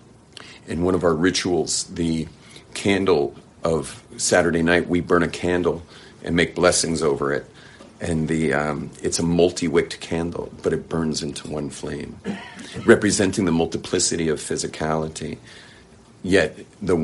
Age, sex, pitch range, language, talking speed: 50-69, male, 80-95 Hz, English, 135 wpm